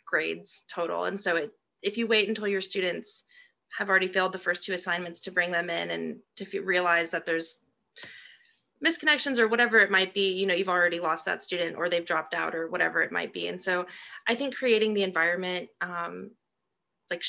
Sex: female